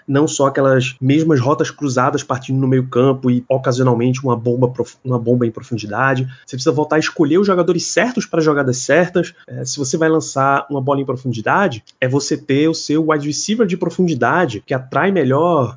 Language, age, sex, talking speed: Portuguese, 20-39, male, 200 wpm